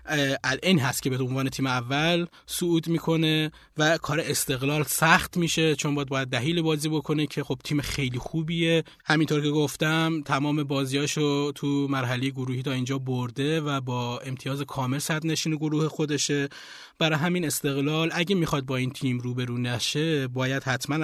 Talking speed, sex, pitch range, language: 155 wpm, male, 135-165 Hz, Persian